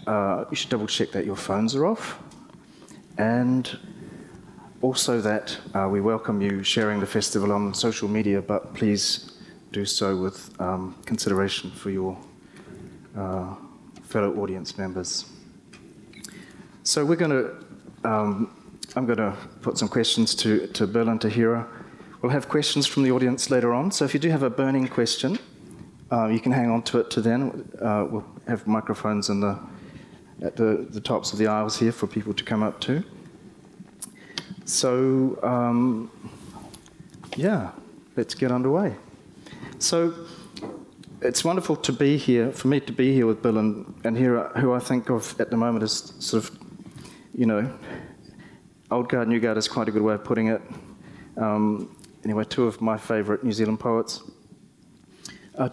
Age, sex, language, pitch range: 30-49, male, English, 110-130 Hz